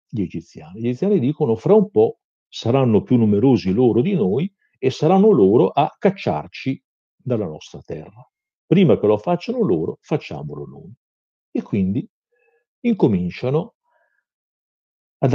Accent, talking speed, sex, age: native, 130 wpm, male, 50-69